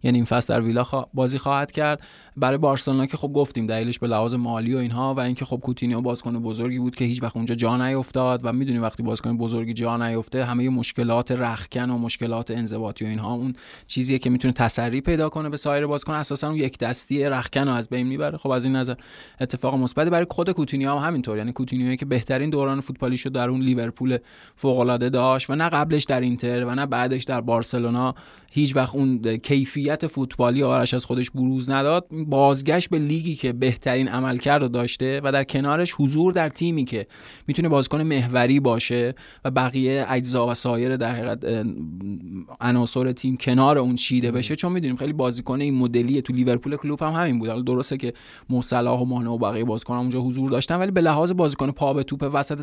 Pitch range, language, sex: 120-140 Hz, Persian, male